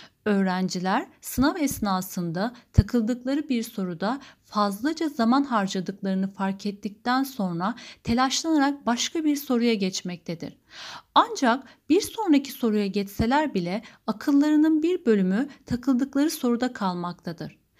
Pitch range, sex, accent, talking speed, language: 200-280 Hz, female, native, 100 wpm, Turkish